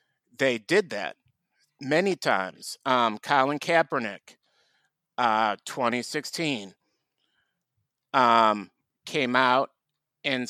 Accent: American